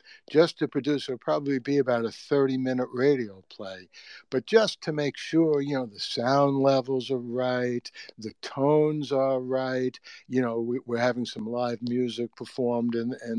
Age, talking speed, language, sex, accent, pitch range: 60-79, 175 wpm, English, male, American, 120-140 Hz